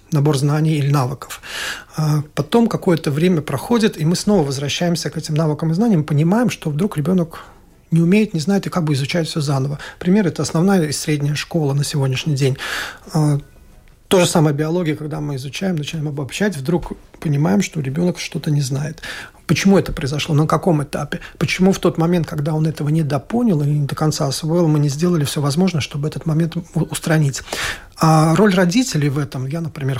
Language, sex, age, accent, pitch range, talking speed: Russian, male, 40-59, native, 150-175 Hz, 190 wpm